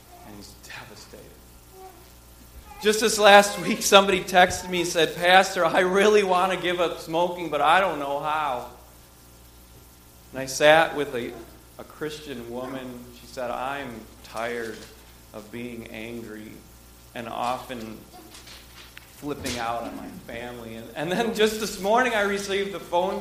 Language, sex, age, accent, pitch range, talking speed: English, male, 40-59, American, 110-175 Hz, 145 wpm